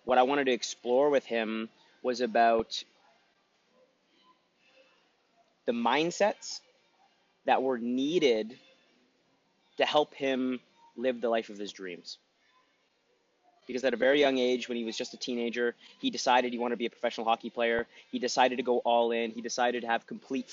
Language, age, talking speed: English, 30-49, 165 wpm